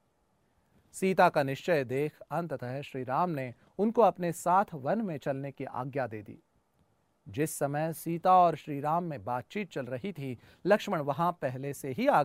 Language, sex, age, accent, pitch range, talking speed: Hindi, male, 40-59, native, 140-195 Hz, 170 wpm